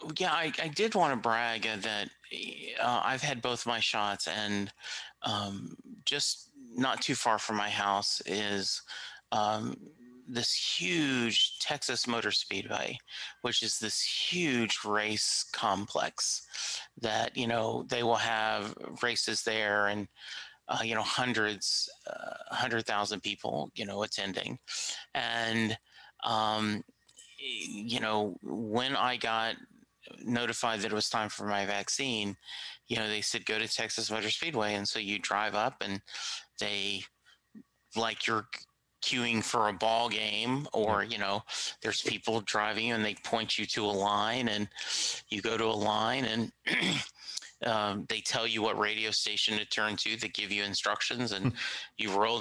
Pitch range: 105-120 Hz